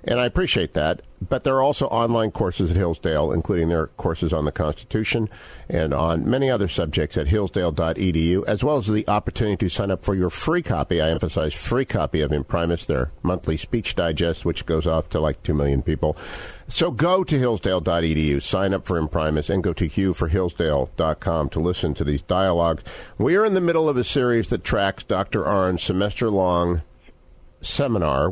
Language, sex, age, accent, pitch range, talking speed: English, male, 50-69, American, 85-115 Hz, 190 wpm